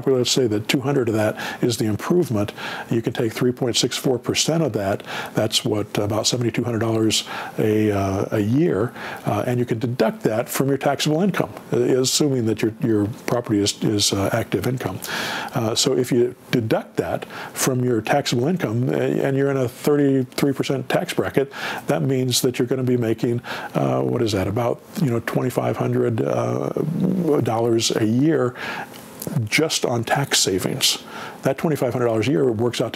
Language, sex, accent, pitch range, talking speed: English, male, American, 115-140 Hz, 160 wpm